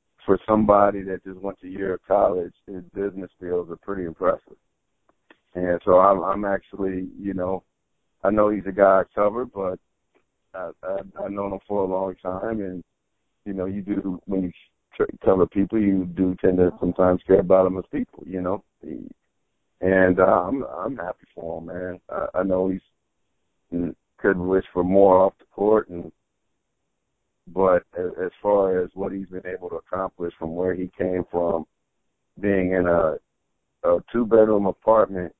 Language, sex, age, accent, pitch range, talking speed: English, male, 60-79, American, 90-95 Hz, 180 wpm